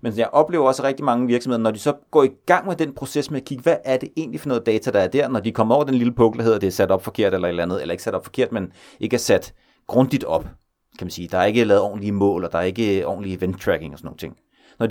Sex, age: male, 30-49